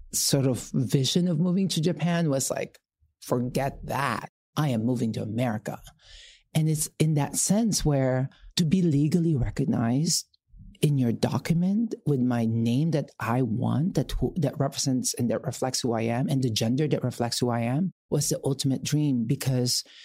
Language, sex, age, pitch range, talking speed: English, male, 50-69, 125-160 Hz, 170 wpm